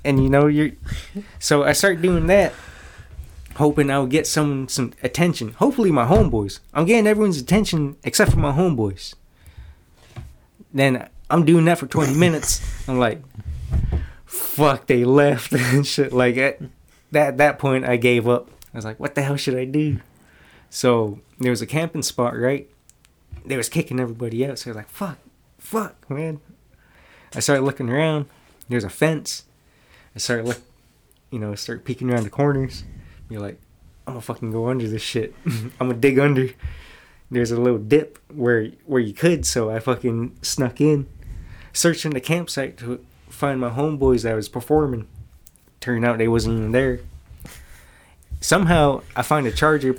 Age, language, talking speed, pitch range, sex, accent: 20-39, English, 165 wpm, 115-150 Hz, male, American